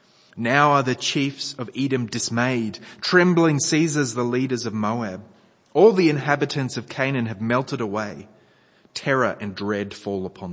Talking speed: 150 wpm